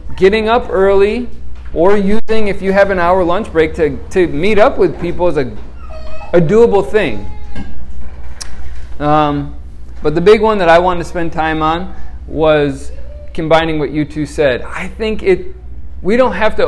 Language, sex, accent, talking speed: English, male, American, 175 wpm